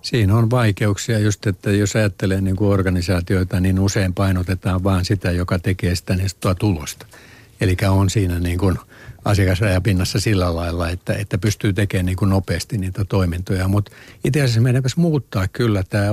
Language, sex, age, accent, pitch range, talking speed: Finnish, male, 60-79, native, 95-115 Hz, 160 wpm